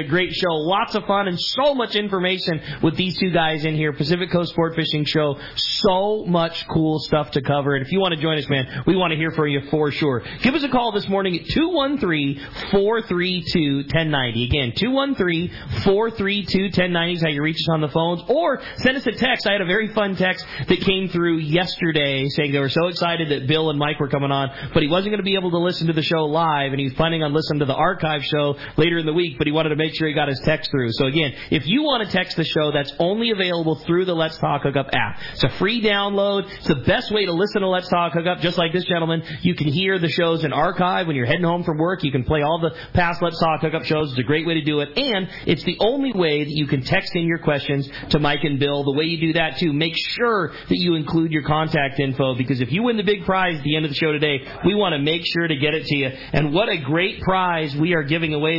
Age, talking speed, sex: 30-49, 260 wpm, male